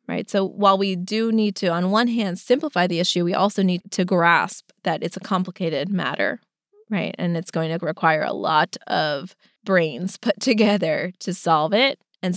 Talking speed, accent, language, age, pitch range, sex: 185 wpm, American, English, 20-39, 170-210 Hz, female